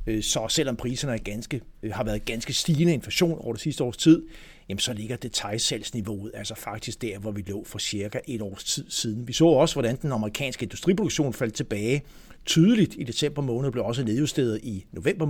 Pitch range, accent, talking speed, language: 110-150 Hz, native, 195 wpm, Danish